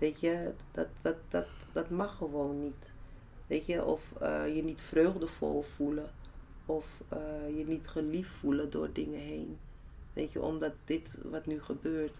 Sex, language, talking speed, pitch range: female, Dutch, 150 wpm, 120-155 Hz